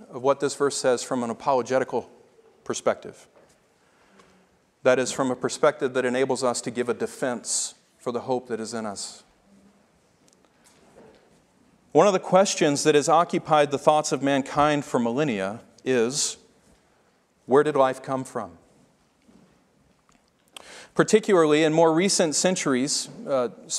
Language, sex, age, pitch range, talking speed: English, male, 40-59, 130-170 Hz, 135 wpm